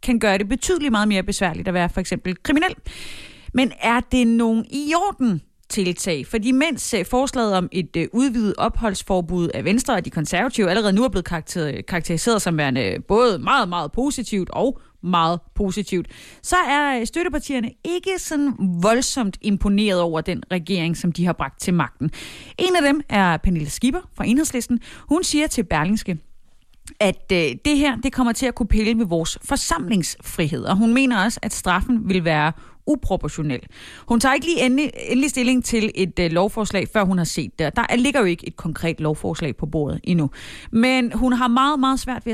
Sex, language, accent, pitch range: female, Danish, native, 180-250 Hz